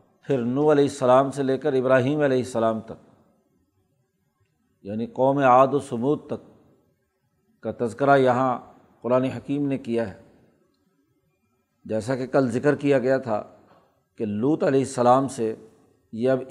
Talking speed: 140 wpm